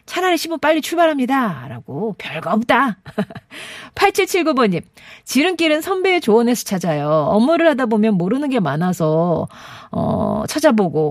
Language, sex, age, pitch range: Korean, female, 40-59, 165-245 Hz